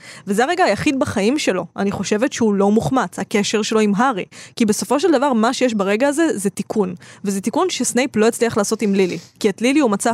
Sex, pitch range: female, 200-240 Hz